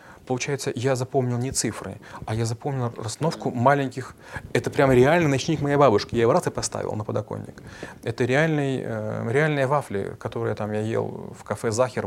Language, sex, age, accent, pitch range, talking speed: Russian, male, 30-49, native, 110-135 Hz, 170 wpm